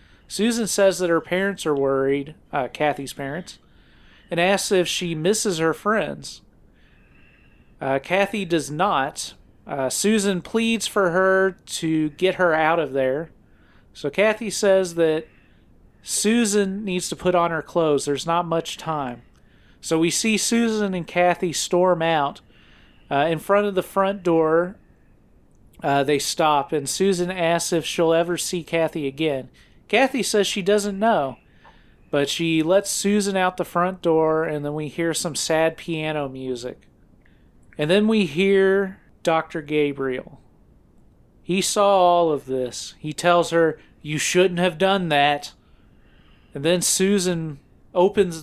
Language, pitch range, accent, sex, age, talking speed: English, 150-190 Hz, American, male, 40-59, 145 wpm